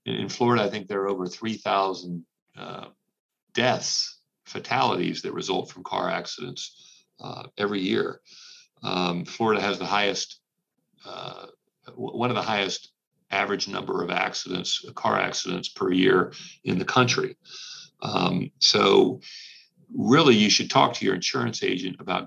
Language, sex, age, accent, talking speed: English, male, 50-69, American, 135 wpm